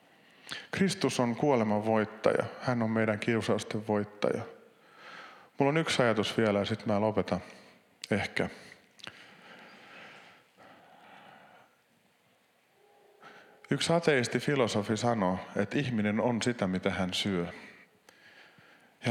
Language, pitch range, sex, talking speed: Finnish, 110-170 Hz, male, 95 wpm